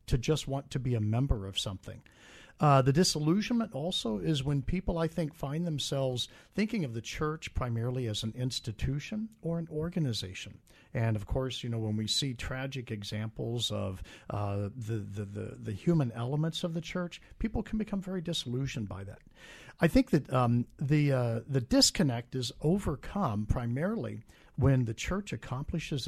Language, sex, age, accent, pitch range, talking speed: English, male, 50-69, American, 115-155 Hz, 170 wpm